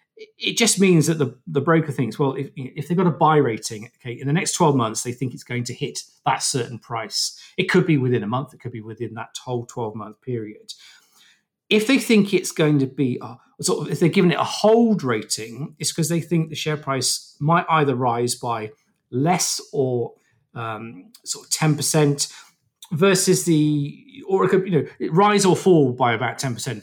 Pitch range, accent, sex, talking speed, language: 125-170 Hz, British, male, 210 wpm, English